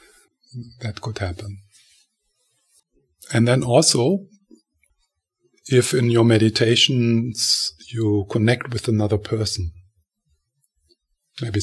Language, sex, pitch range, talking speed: English, male, 100-120 Hz, 85 wpm